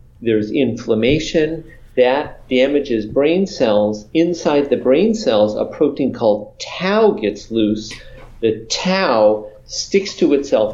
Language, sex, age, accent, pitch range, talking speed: English, male, 40-59, American, 115-160 Hz, 115 wpm